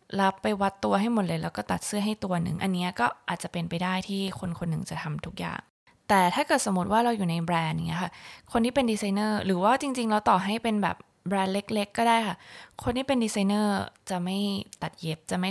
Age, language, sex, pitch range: 20-39, Thai, female, 180-215 Hz